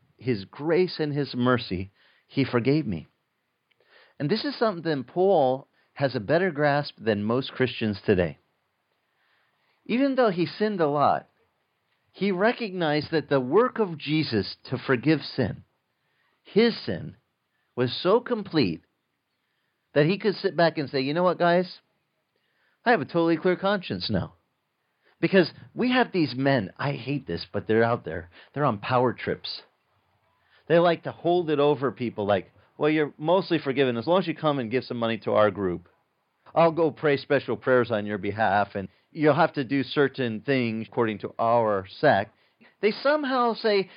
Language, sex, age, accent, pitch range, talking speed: English, male, 40-59, American, 130-190 Hz, 165 wpm